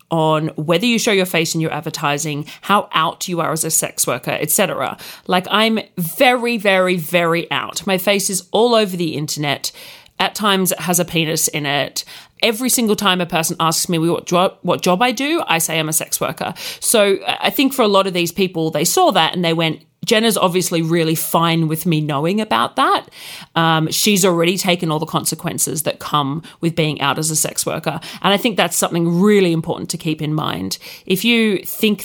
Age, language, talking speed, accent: 30-49, English, 210 wpm, Australian